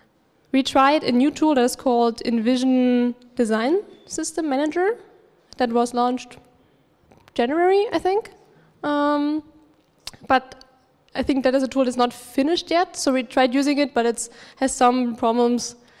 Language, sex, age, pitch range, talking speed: Bulgarian, female, 10-29, 225-260 Hz, 150 wpm